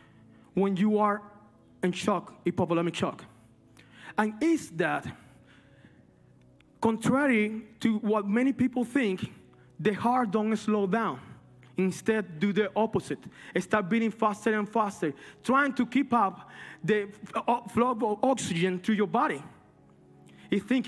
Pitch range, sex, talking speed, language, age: 175-225 Hz, male, 125 wpm, English, 30-49